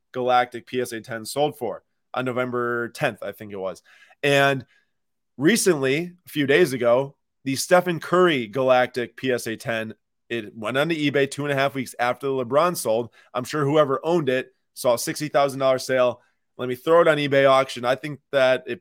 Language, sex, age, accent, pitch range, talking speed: English, male, 20-39, American, 120-145 Hz, 185 wpm